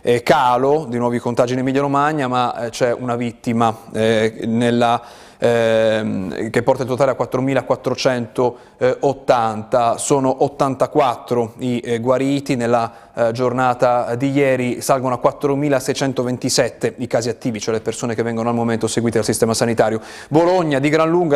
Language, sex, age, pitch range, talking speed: Italian, male, 30-49, 120-145 Hz, 130 wpm